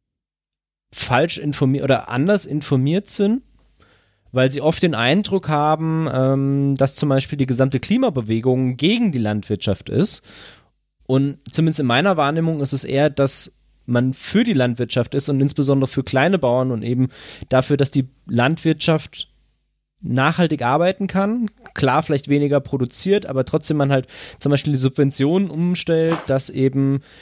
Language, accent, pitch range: German, German, 125-155 Hz